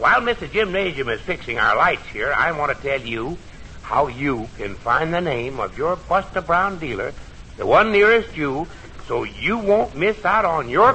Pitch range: 125-195 Hz